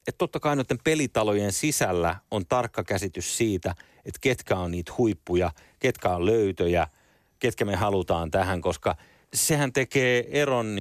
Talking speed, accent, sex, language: 145 wpm, native, male, Finnish